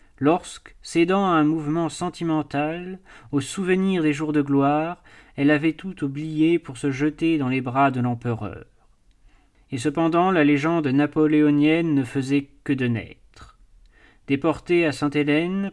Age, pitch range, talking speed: 30-49, 135-165 Hz, 140 wpm